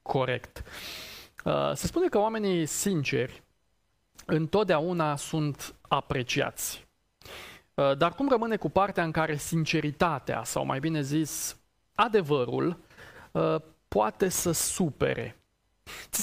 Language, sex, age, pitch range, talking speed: Romanian, male, 30-49, 145-185 Hz, 90 wpm